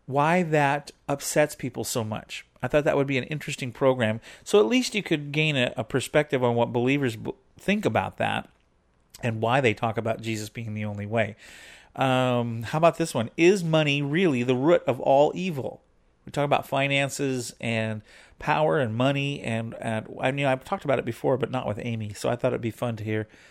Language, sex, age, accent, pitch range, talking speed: English, male, 40-59, American, 115-145 Hz, 205 wpm